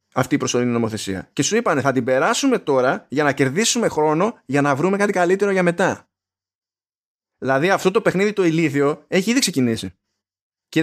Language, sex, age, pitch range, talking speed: Greek, male, 20-39, 130-190 Hz, 175 wpm